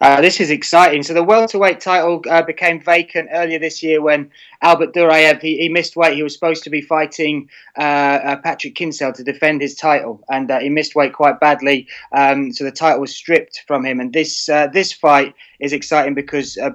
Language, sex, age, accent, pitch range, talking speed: English, male, 20-39, British, 140-155 Hz, 210 wpm